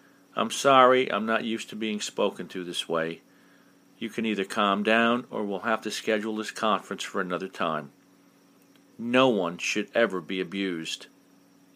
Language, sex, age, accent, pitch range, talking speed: English, male, 50-69, American, 105-150 Hz, 165 wpm